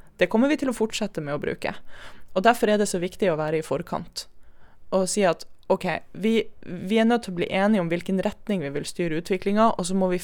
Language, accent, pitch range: Danish, Swedish, 170-215 Hz